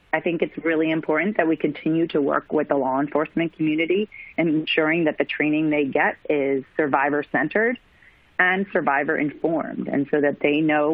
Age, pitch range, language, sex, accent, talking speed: 30-49, 140-160 Hz, English, female, American, 170 wpm